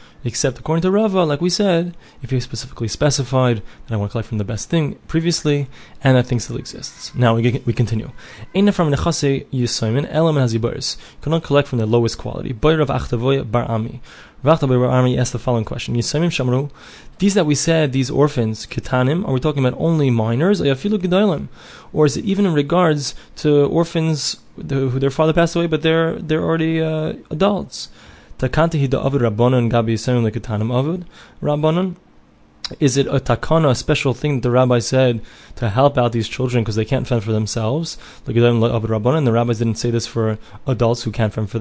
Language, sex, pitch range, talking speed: English, male, 120-155 Hz, 160 wpm